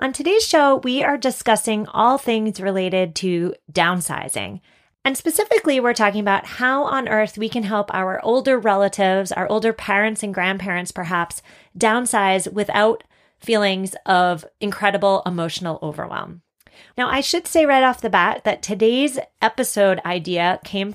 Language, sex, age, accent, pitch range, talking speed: English, female, 30-49, American, 185-240 Hz, 145 wpm